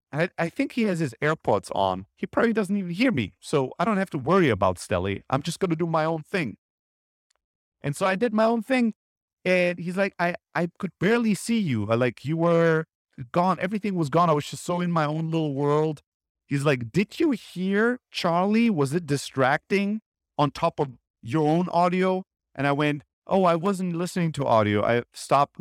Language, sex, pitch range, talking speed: English, male, 145-210 Hz, 205 wpm